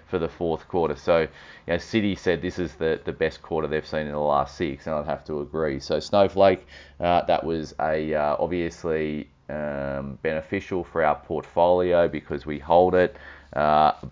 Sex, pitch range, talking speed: male, 75-90 Hz, 185 wpm